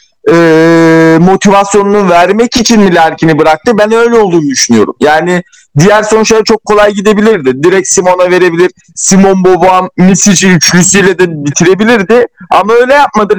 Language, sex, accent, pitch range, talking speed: Turkish, male, native, 175-210 Hz, 130 wpm